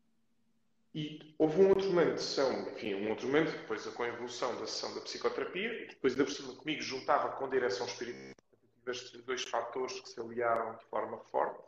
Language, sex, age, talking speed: Portuguese, male, 40-59, 180 wpm